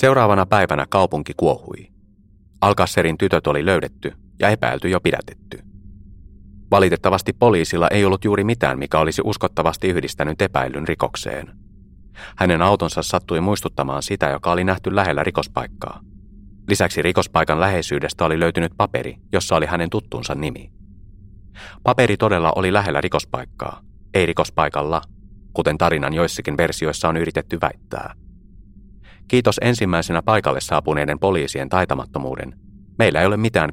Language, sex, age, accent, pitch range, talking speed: Finnish, male, 30-49, native, 80-100 Hz, 125 wpm